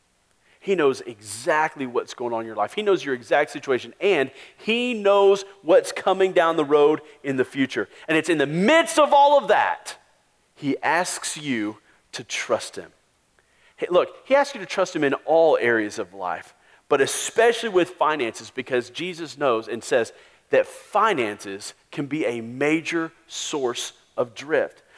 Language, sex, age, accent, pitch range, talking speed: English, male, 40-59, American, 145-210 Hz, 170 wpm